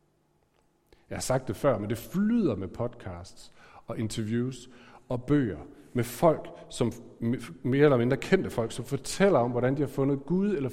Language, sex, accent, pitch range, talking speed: Danish, male, native, 125-175 Hz, 175 wpm